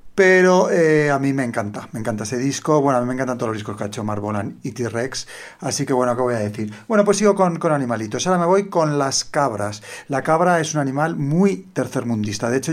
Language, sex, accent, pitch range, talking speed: Spanish, male, Spanish, 120-155 Hz, 245 wpm